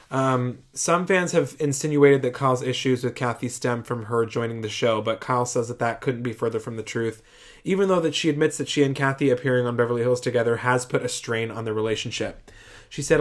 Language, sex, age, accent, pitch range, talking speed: English, male, 20-39, American, 120-145 Hz, 225 wpm